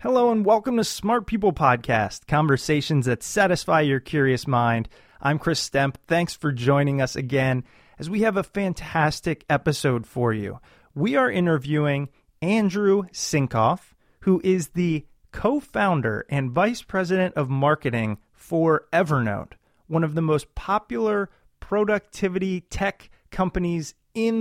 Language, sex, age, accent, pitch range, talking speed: English, male, 30-49, American, 130-190 Hz, 135 wpm